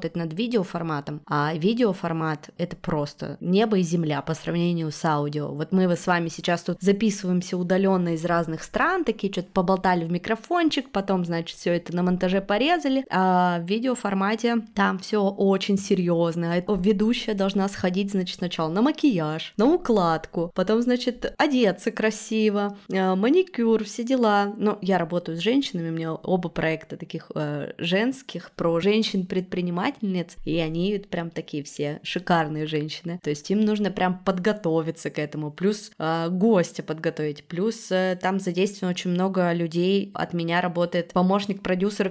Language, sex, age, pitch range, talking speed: Russian, female, 20-39, 165-200 Hz, 150 wpm